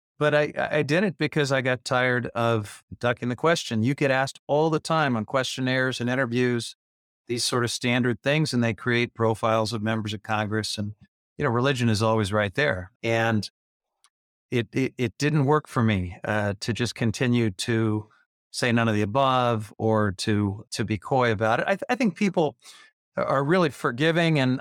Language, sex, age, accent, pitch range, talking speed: English, male, 50-69, American, 120-150 Hz, 190 wpm